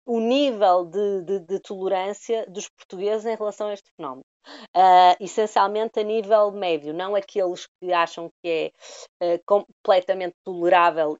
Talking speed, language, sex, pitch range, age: 135 wpm, Portuguese, female, 175-225 Hz, 20-39